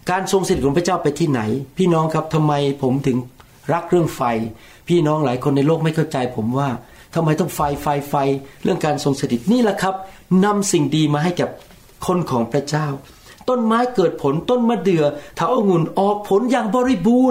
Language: Thai